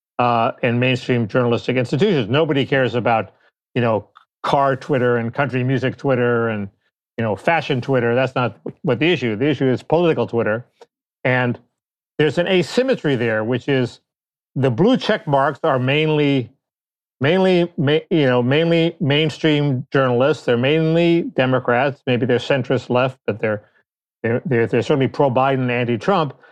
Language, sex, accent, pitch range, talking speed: English, male, American, 130-165 Hz, 145 wpm